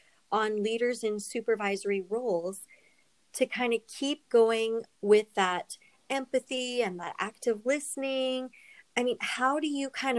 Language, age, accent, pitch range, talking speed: English, 40-59, American, 195-230 Hz, 135 wpm